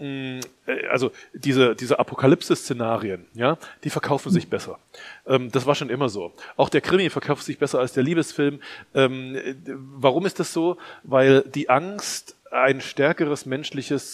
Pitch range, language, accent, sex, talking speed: 130-150 Hz, German, German, male, 150 wpm